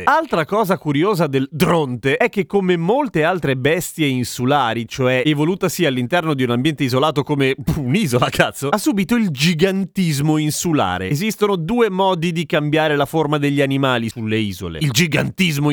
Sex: male